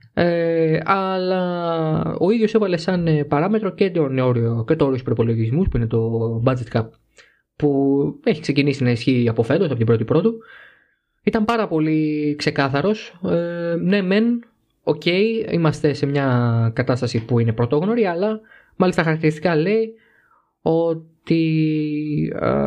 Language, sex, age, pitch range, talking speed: Greek, male, 20-39, 130-165 Hz, 120 wpm